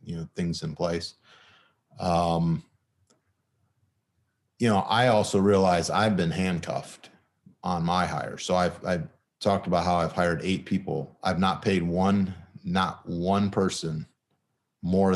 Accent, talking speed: American, 140 wpm